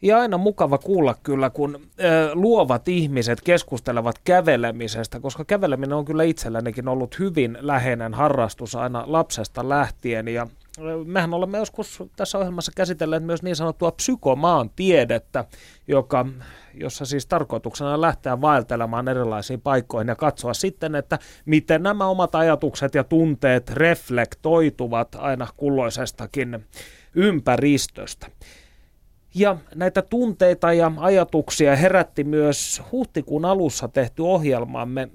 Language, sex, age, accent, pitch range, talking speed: Finnish, male, 30-49, native, 125-170 Hz, 115 wpm